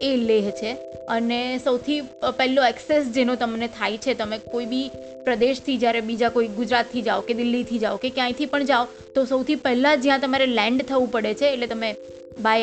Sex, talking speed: female, 150 wpm